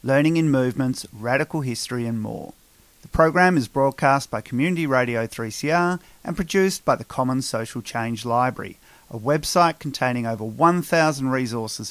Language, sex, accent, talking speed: English, male, Australian, 145 wpm